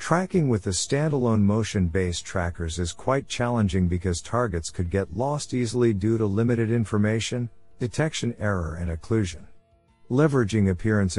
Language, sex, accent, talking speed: English, male, American, 135 wpm